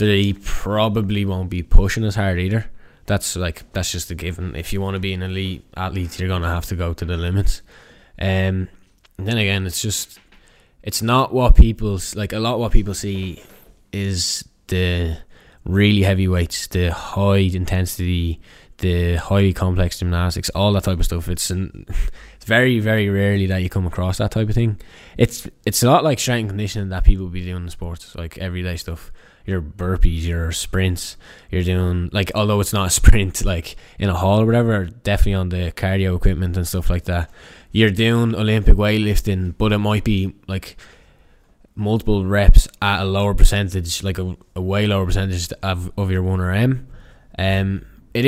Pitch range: 90-105 Hz